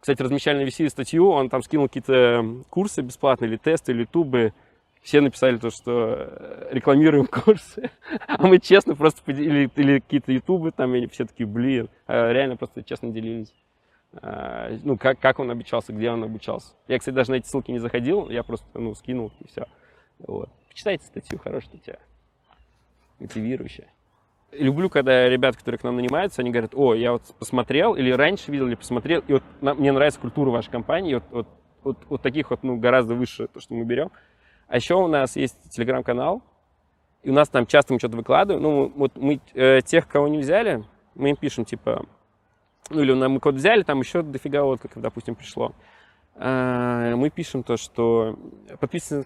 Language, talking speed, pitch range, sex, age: Russian, 180 wpm, 120-145 Hz, male, 20-39